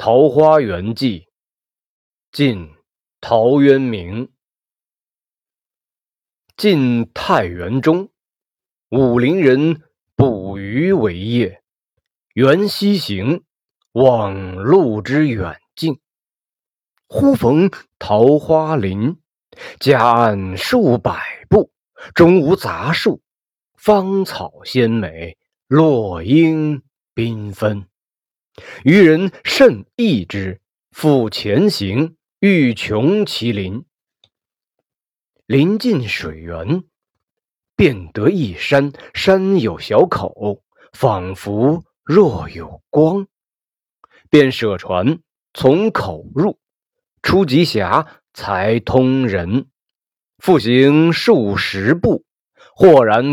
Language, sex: Chinese, male